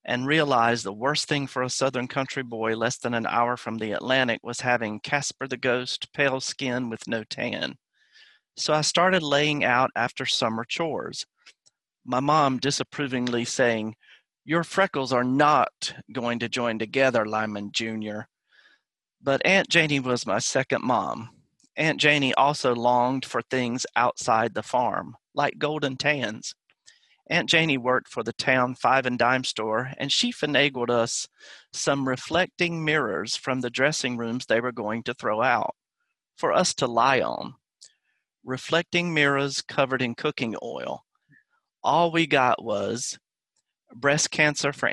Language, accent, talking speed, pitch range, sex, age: English, American, 150 wpm, 120-150 Hz, male, 40-59